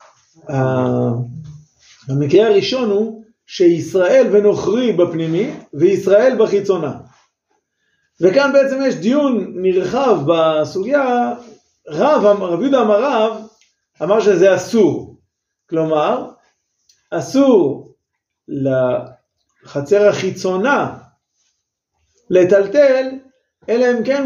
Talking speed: 70 wpm